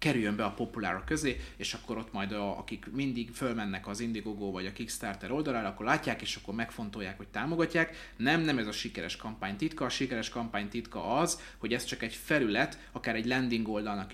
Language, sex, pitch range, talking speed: Hungarian, male, 105-130 Hz, 200 wpm